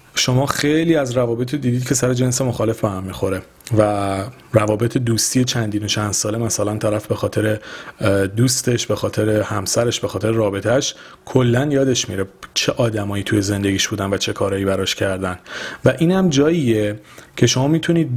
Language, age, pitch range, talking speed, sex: Persian, 40-59, 105-130 Hz, 160 wpm, male